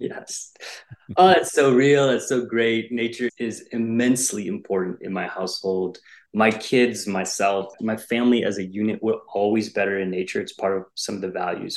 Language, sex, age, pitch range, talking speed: English, male, 20-39, 100-125 Hz, 180 wpm